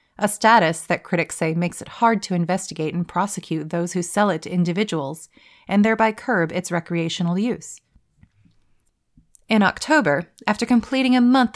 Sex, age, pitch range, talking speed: female, 30-49, 165-210 Hz, 155 wpm